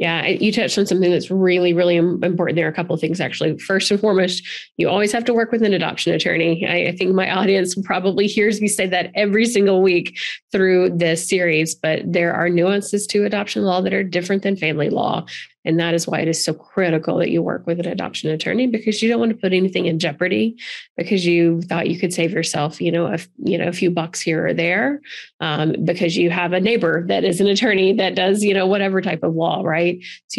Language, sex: English, female